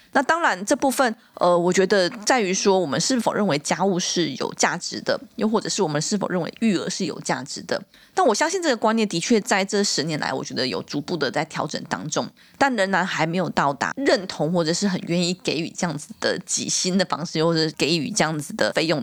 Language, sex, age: Chinese, female, 20-39